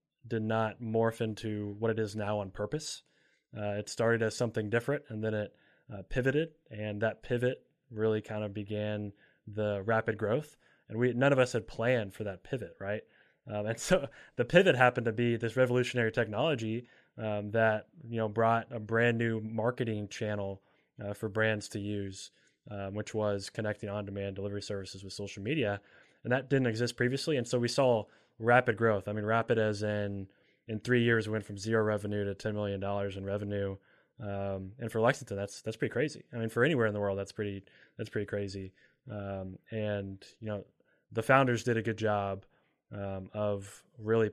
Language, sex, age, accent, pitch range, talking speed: English, male, 20-39, American, 100-115 Hz, 190 wpm